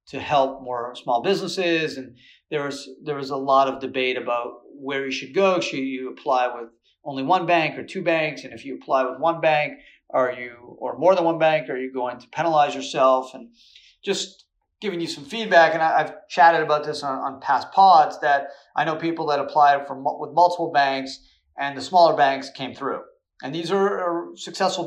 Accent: American